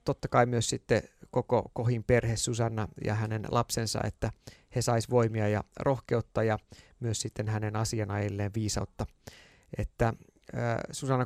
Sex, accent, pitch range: male, native, 105-125 Hz